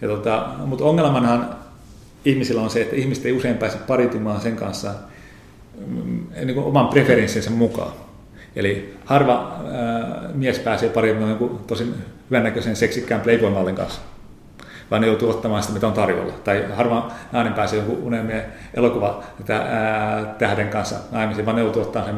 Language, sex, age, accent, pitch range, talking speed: Finnish, male, 40-59, native, 105-120 Hz, 155 wpm